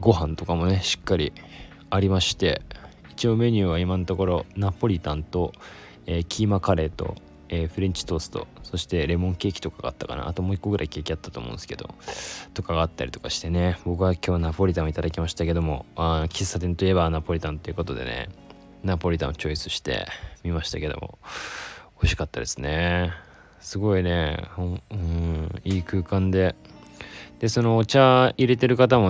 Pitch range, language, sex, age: 80-95 Hz, Japanese, male, 20-39